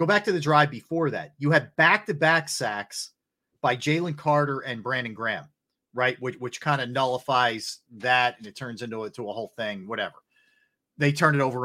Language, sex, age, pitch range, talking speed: English, male, 40-59, 125-155 Hz, 190 wpm